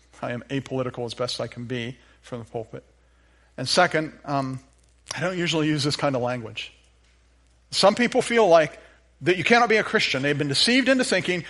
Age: 50-69